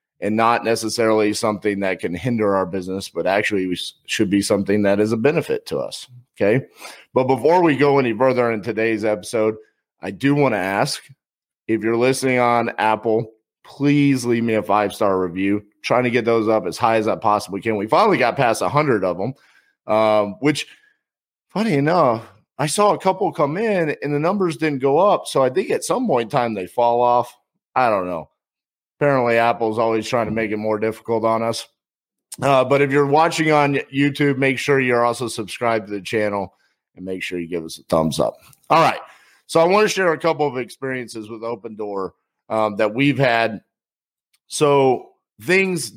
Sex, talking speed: male, 195 wpm